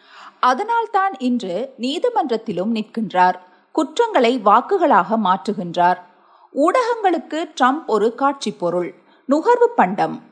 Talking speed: 80 wpm